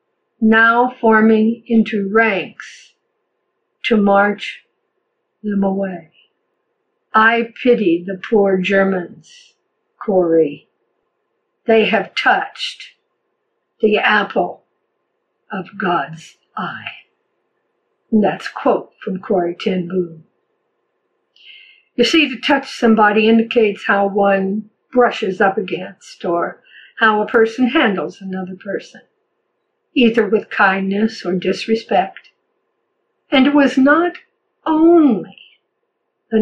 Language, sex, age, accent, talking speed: English, female, 60-79, American, 95 wpm